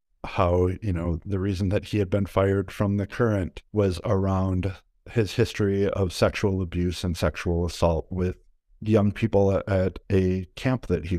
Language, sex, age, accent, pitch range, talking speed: English, male, 50-69, American, 90-105 Hz, 165 wpm